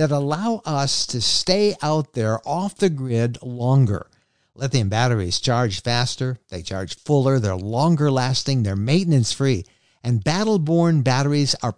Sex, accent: male, American